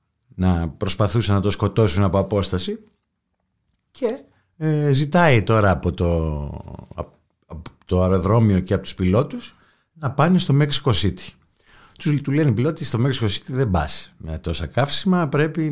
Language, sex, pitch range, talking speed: Greek, male, 100-150 Hz, 140 wpm